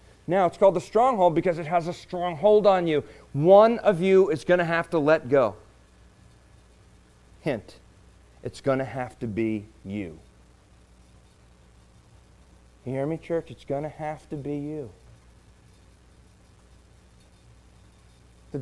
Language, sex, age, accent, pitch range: Japanese, male, 40-59, American, 110-180 Hz